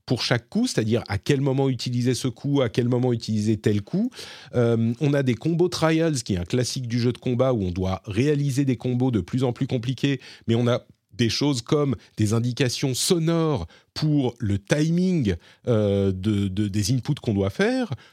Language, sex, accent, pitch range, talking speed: French, male, French, 110-150 Hz, 200 wpm